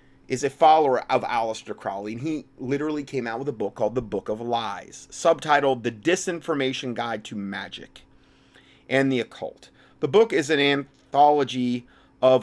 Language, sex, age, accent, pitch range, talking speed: English, male, 30-49, American, 110-145 Hz, 165 wpm